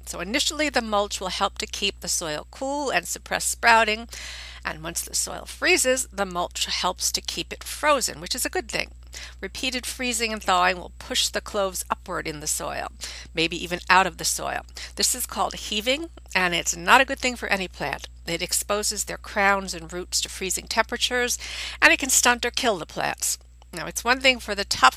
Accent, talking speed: American, 205 wpm